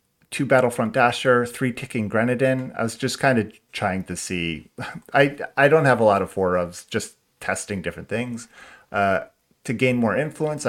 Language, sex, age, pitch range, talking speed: English, male, 30-49, 95-120 Hz, 180 wpm